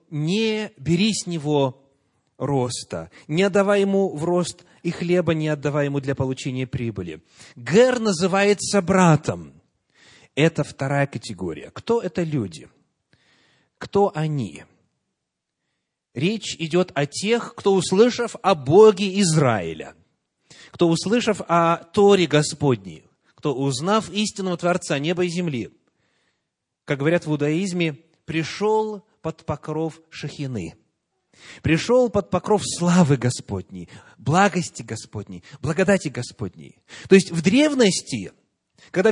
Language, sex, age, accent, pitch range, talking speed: Russian, male, 30-49, native, 145-205 Hz, 110 wpm